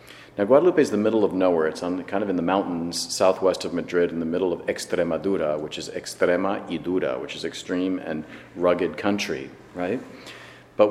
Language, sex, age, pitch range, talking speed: English, male, 40-59, 85-105 Hz, 200 wpm